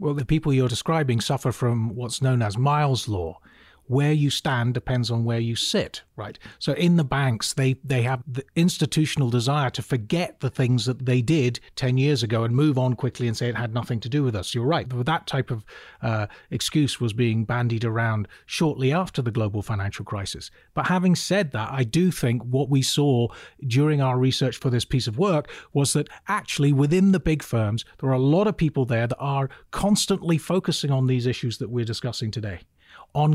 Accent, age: British, 40-59